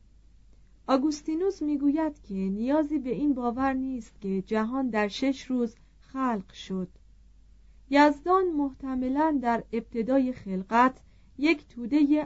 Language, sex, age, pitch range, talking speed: Persian, female, 40-59, 215-280 Hz, 110 wpm